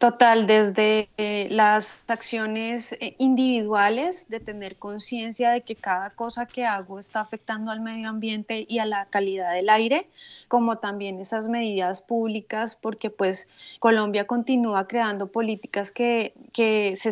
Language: Spanish